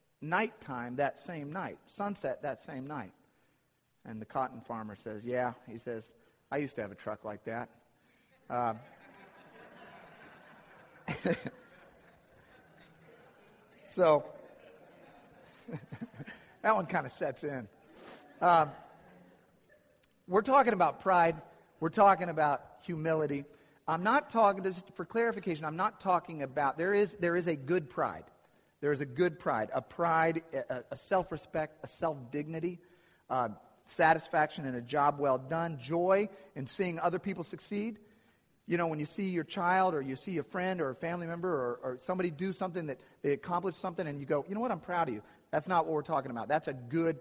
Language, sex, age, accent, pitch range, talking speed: English, male, 50-69, American, 145-185 Hz, 160 wpm